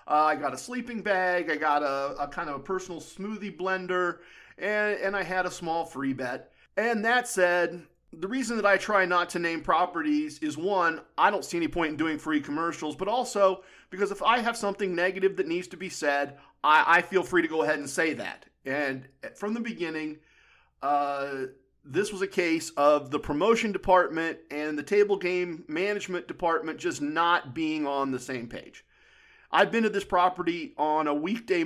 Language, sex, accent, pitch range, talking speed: English, male, American, 155-220 Hz, 195 wpm